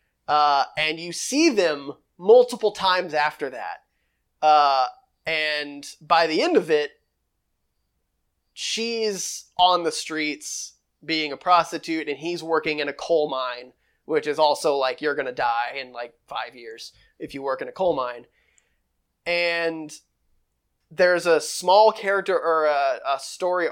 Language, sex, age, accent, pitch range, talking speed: English, male, 20-39, American, 150-190 Hz, 145 wpm